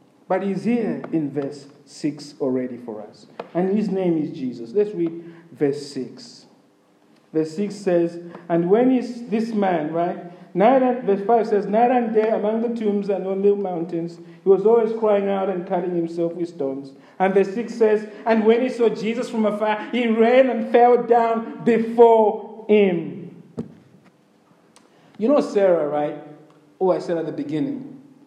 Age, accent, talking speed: 50-69, Nigerian, 165 wpm